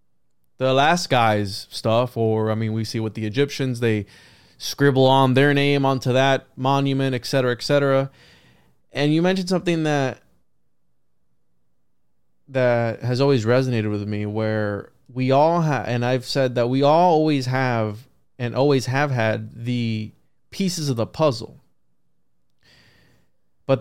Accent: American